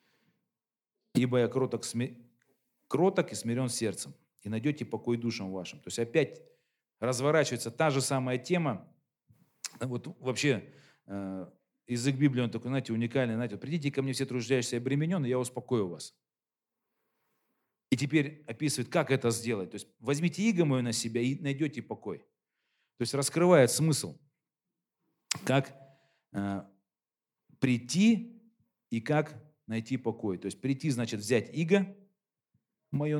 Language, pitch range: Russian, 115-150 Hz